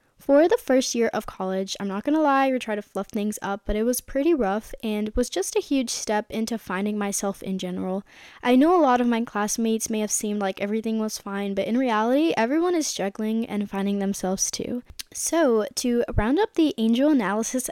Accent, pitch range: American, 210-260 Hz